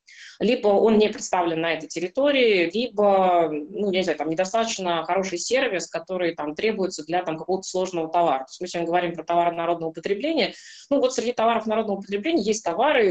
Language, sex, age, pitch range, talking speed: Russian, female, 20-39, 175-225 Hz, 185 wpm